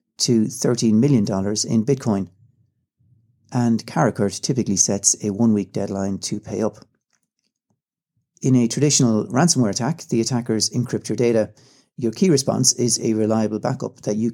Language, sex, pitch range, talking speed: English, male, 105-130 Hz, 145 wpm